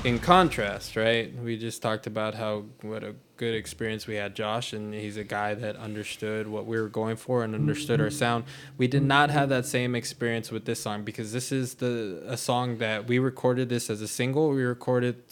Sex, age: male, 20-39